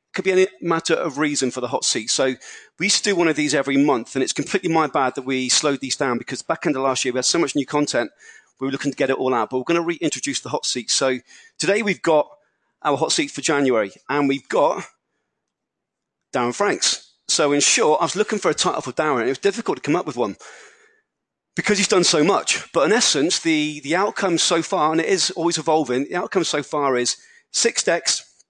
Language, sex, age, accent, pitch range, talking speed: English, male, 40-59, British, 140-190 Hz, 245 wpm